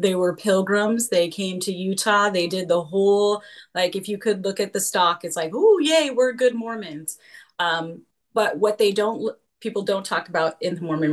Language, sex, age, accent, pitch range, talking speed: English, female, 30-49, American, 170-205 Hz, 205 wpm